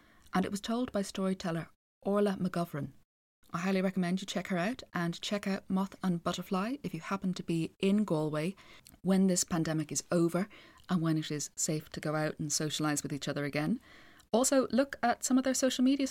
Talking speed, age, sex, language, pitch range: 205 wpm, 20-39, female, English, 165-205 Hz